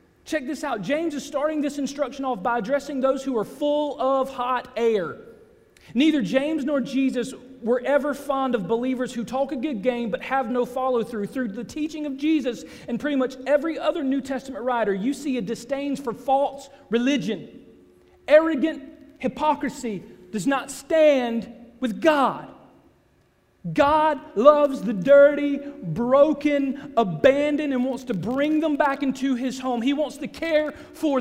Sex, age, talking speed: male, 40-59, 160 wpm